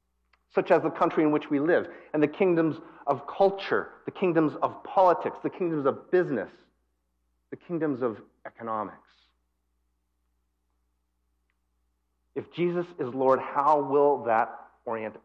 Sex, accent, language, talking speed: male, American, English, 130 wpm